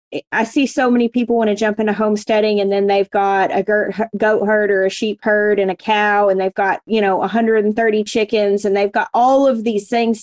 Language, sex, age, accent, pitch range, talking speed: English, female, 30-49, American, 195-225 Hz, 225 wpm